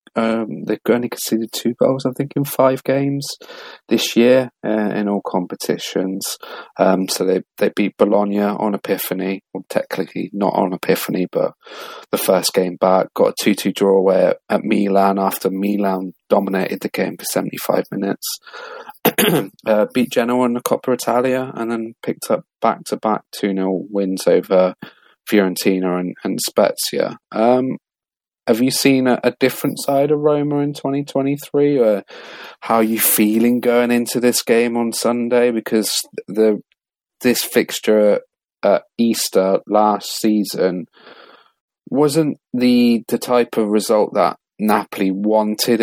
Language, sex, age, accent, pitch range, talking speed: English, male, 30-49, British, 100-125 Hz, 145 wpm